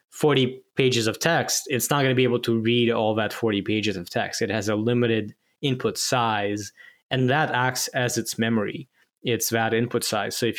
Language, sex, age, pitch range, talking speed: English, male, 10-29, 110-125 Hz, 205 wpm